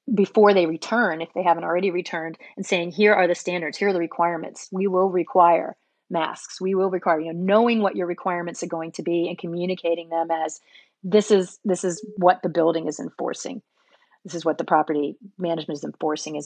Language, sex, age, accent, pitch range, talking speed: English, female, 30-49, American, 170-205 Hz, 205 wpm